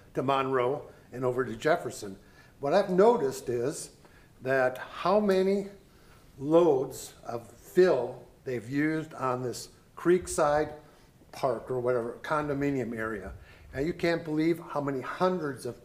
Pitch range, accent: 130-170 Hz, American